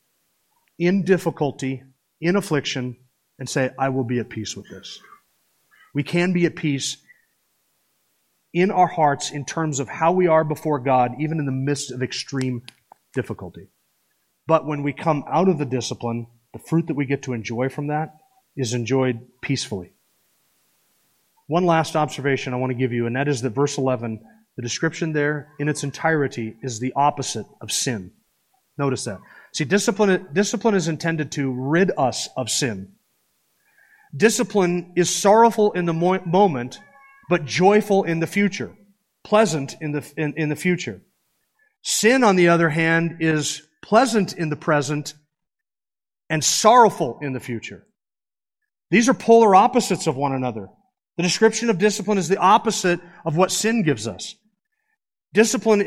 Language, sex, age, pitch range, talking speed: English, male, 30-49, 135-190 Hz, 155 wpm